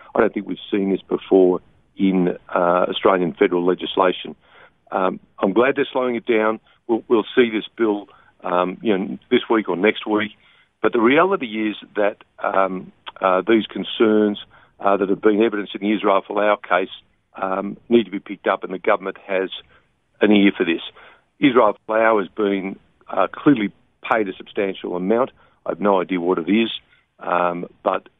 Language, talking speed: English, 180 wpm